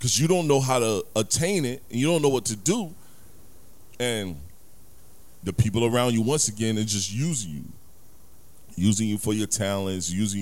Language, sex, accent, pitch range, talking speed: English, male, American, 80-105 Hz, 185 wpm